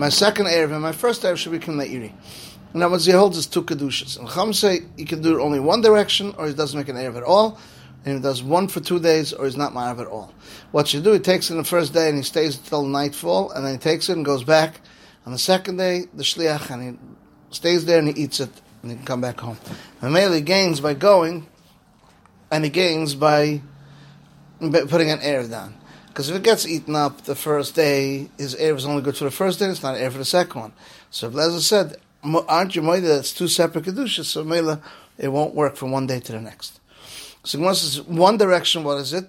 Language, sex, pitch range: English, male, 140-170 Hz